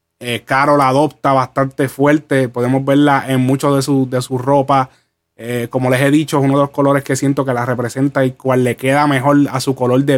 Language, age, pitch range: Spanish, 20-39, 125-150 Hz